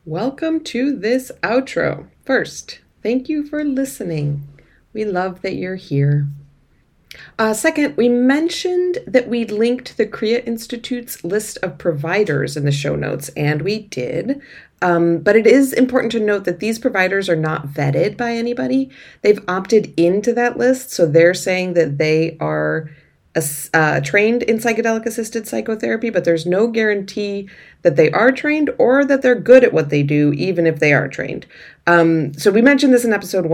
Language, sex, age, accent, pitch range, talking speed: English, female, 30-49, American, 155-235 Hz, 170 wpm